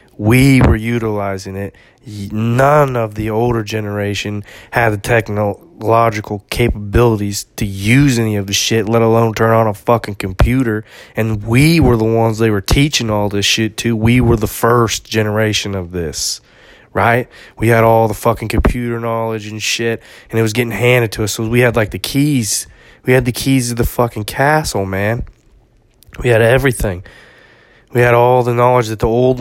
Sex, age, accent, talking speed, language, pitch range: male, 20-39, American, 180 wpm, English, 105-120 Hz